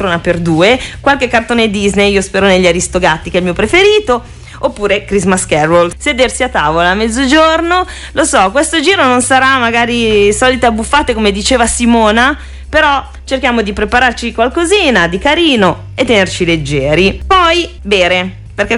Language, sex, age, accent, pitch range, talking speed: Italian, female, 30-49, native, 195-275 Hz, 155 wpm